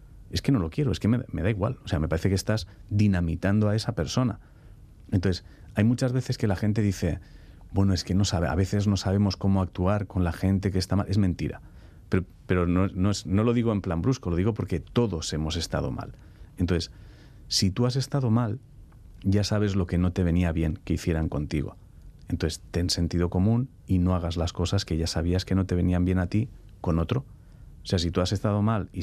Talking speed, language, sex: 230 wpm, Spanish, male